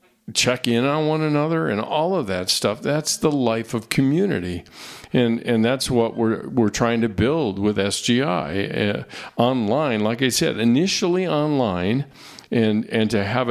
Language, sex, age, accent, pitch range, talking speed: English, male, 50-69, American, 100-130 Hz, 165 wpm